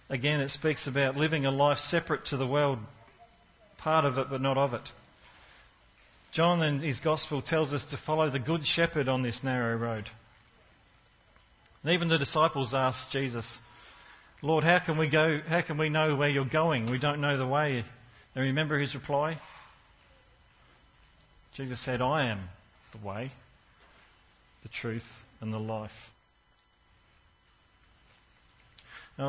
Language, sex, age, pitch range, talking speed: English, male, 40-59, 110-140 Hz, 150 wpm